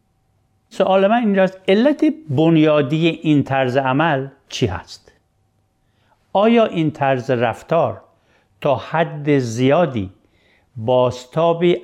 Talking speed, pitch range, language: 90 wpm, 120-175 Hz, Persian